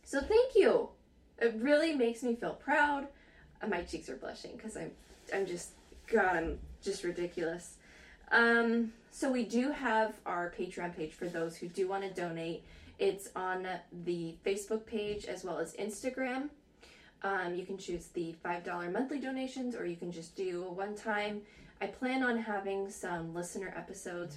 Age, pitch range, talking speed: 20-39, 175-225 Hz, 165 wpm